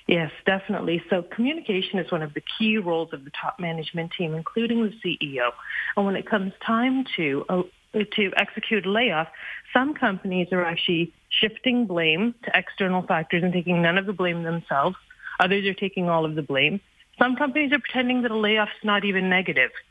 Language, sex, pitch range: English, female, 175-225 Hz